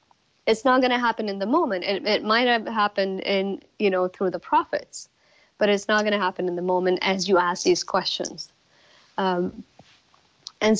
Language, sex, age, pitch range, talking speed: English, female, 30-49, 185-220 Hz, 195 wpm